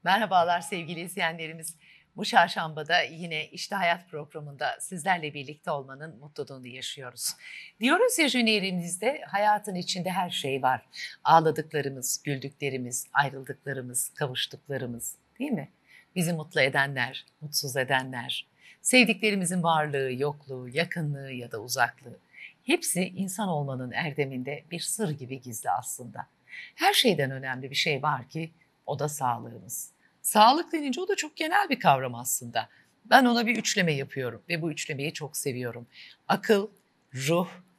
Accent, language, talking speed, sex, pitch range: native, Turkish, 125 wpm, female, 135-180 Hz